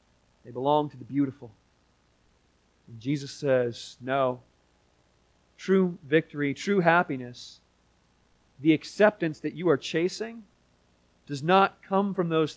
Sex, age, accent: male, 40-59, American